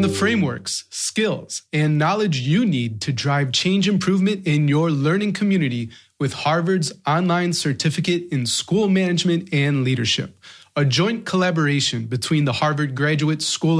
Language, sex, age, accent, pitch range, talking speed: English, male, 30-49, American, 130-175 Hz, 140 wpm